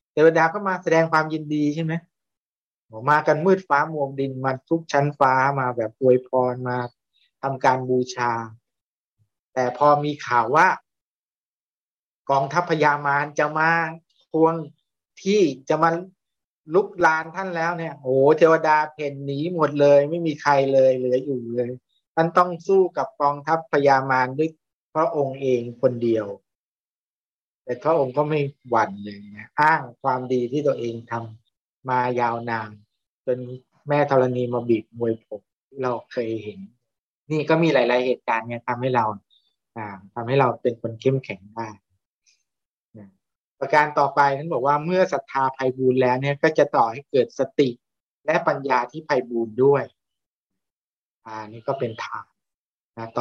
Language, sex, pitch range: Thai, male, 120-150 Hz